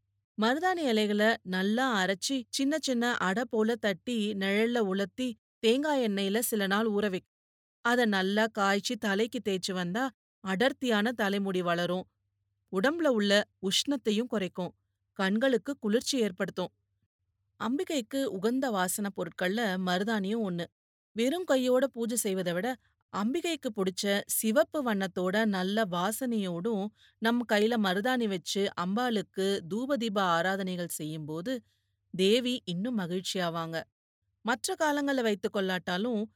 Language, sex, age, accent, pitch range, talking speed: Tamil, female, 30-49, native, 185-245 Hz, 105 wpm